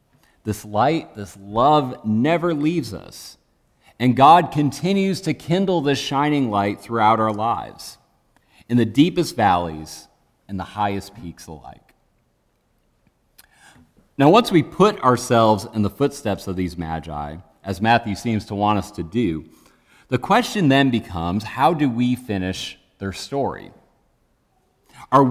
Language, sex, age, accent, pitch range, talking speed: English, male, 40-59, American, 105-150 Hz, 135 wpm